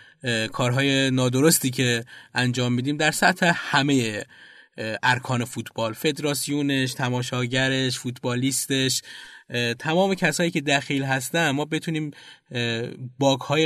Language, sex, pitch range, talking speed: Persian, male, 120-140 Hz, 90 wpm